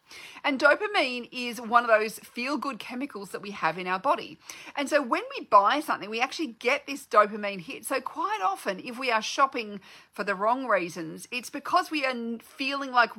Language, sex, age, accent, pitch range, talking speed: English, female, 40-59, Australian, 205-275 Hz, 195 wpm